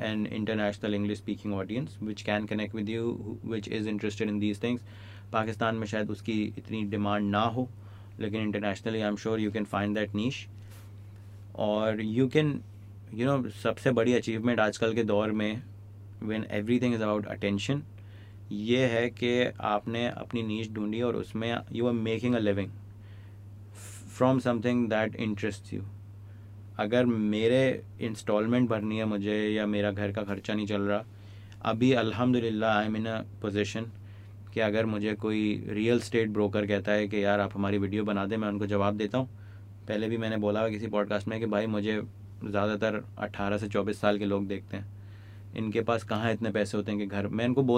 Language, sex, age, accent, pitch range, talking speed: English, male, 30-49, Indian, 100-115 Hz, 145 wpm